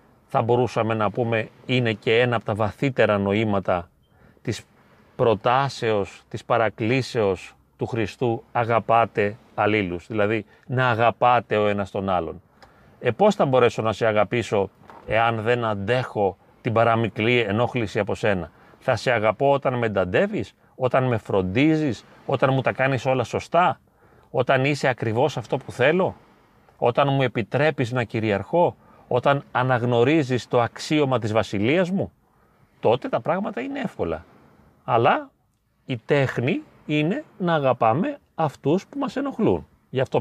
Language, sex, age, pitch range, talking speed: Greek, male, 30-49, 110-140 Hz, 135 wpm